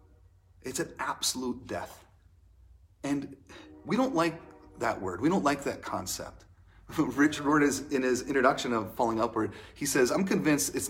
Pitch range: 90-155 Hz